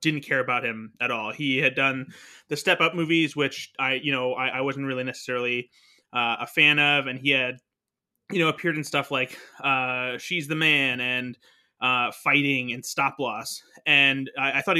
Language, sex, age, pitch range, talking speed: English, male, 20-39, 125-150 Hz, 200 wpm